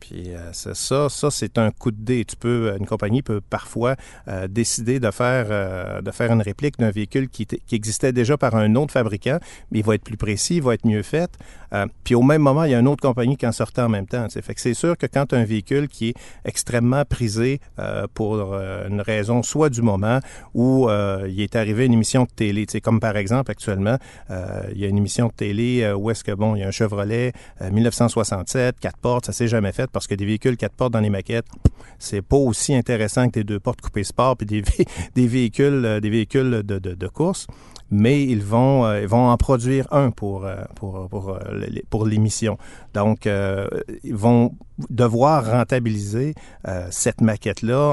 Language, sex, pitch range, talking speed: French, male, 105-125 Hz, 205 wpm